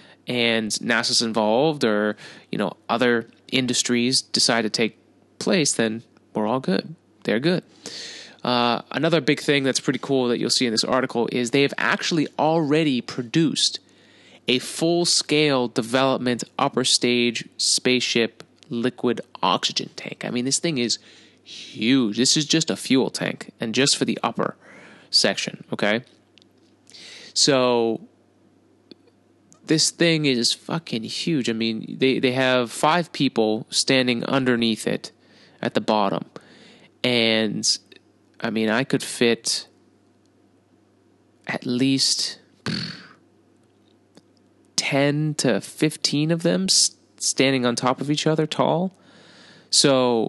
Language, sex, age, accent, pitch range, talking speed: English, male, 20-39, American, 120-150 Hz, 125 wpm